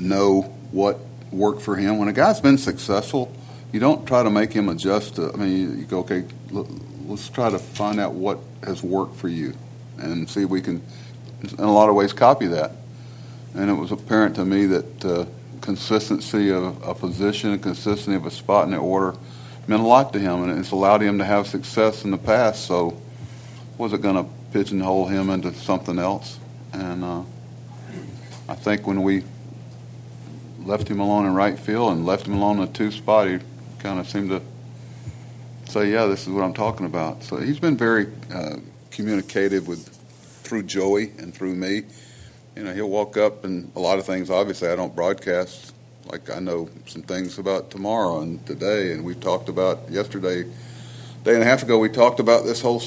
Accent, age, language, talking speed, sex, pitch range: American, 50-69, English, 195 wpm, male, 95-115 Hz